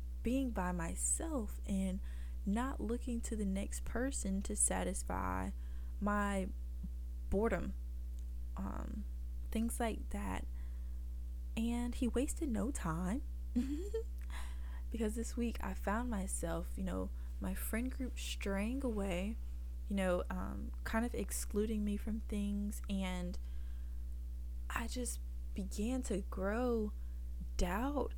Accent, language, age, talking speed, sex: American, English, 20-39, 110 wpm, female